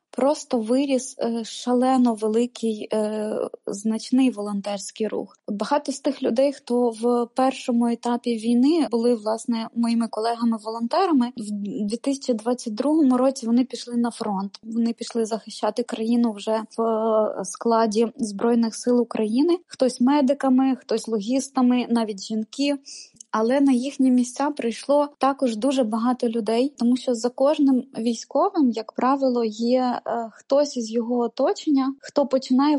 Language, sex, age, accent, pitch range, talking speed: Ukrainian, female, 20-39, native, 230-260 Hz, 125 wpm